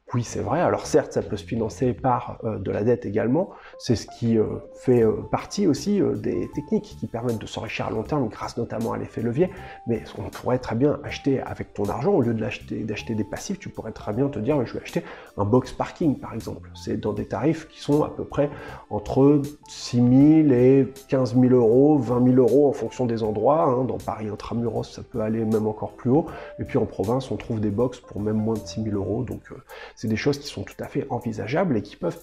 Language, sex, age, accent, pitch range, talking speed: French, male, 30-49, French, 115-145 Hz, 245 wpm